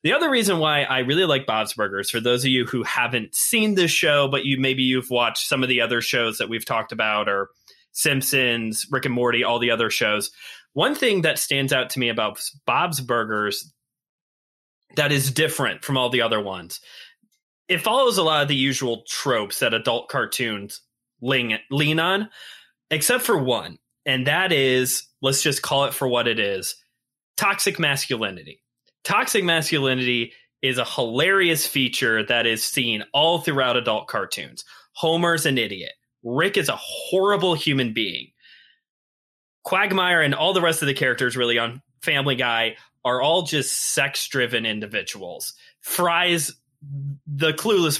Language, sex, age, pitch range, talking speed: English, male, 20-39, 120-165 Hz, 165 wpm